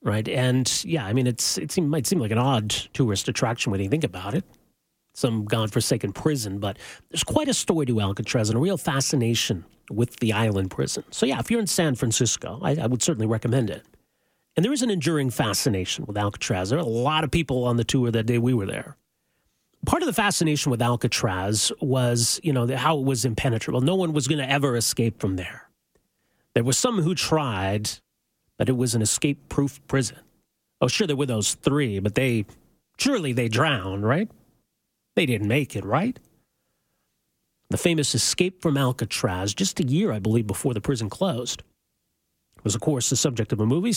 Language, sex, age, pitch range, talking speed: English, male, 40-59, 115-155 Hz, 200 wpm